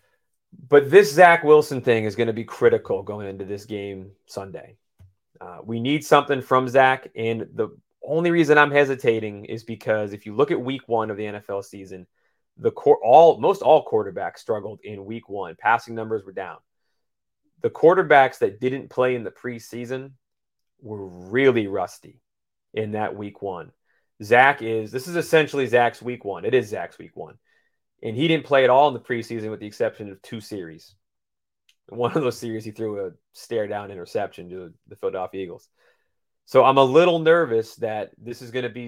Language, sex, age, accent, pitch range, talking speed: English, male, 30-49, American, 110-140 Hz, 185 wpm